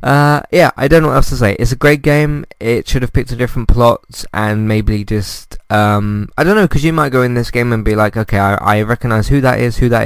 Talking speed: 275 wpm